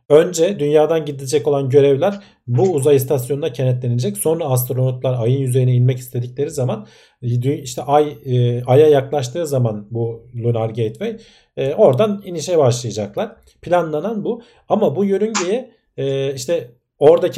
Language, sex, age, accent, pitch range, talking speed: Turkish, male, 50-69, native, 120-155 Hz, 115 wpm